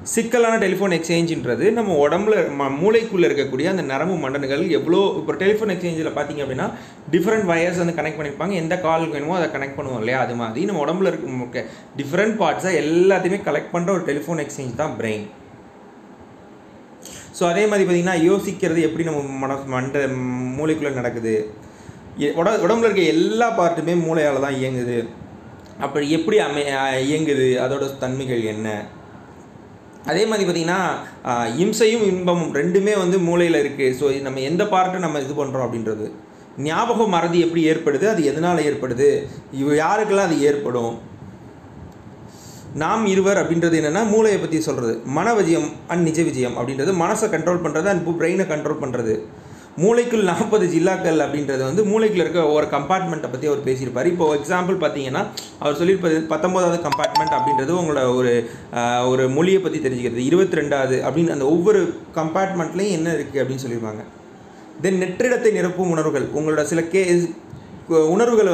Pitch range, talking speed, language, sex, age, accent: 135-185 Hz, 135 wpm, Tamil, male, 30-49, native